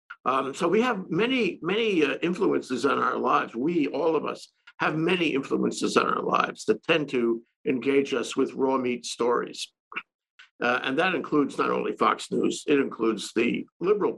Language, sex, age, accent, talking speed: English, male, 60-79, American, 180 wpm